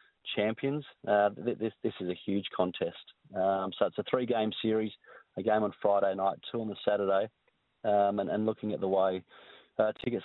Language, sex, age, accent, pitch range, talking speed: English, male, 30-49, Australian, 105-115 Hz, 195 wpm